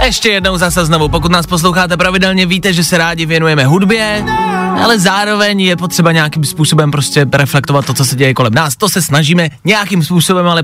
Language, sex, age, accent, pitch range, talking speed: Czech, male, 20-39, native, 135-185 Hz, 190 wpm